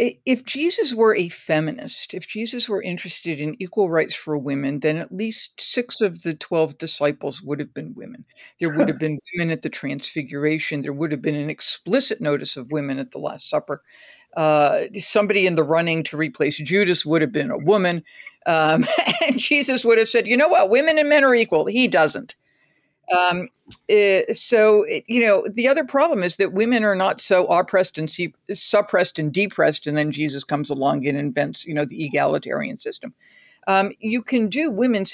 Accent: American